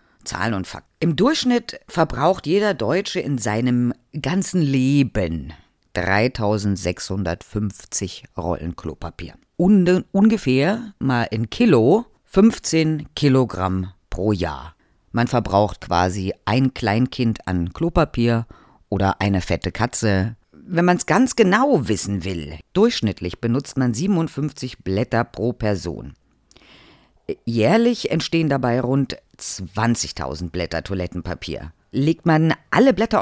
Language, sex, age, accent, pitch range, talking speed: German, female, 50-69, German, 95-160 Hz, 105 wpm